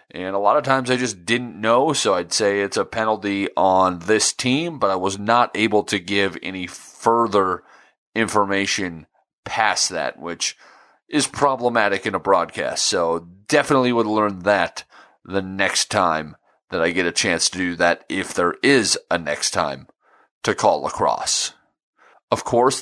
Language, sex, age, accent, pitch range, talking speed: English, male, 30-49, American, 100-120 Hz, 165 wpm